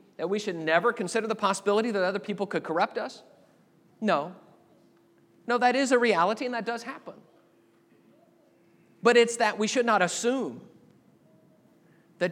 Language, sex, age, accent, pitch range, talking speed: English, male, 40-59, American, 175-235 Hz, 150 wpm